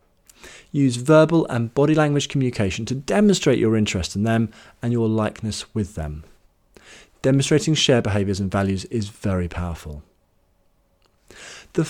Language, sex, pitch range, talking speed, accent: English, male, 95-145 Hz, 130 wpm, British